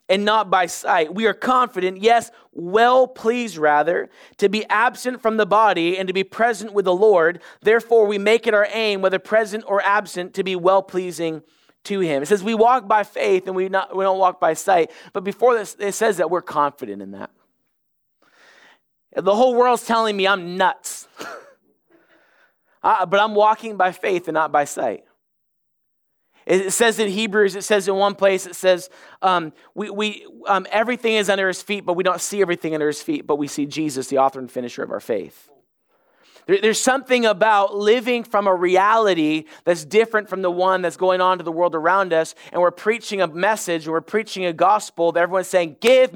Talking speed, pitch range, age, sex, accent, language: 200 wpm, 180-225 Hz, 30-49, male, American, English